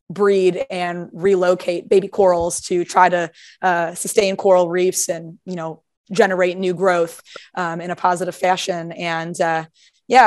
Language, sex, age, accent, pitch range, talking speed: English, female, 20-39, American, 180-205 Hz, 150 wpm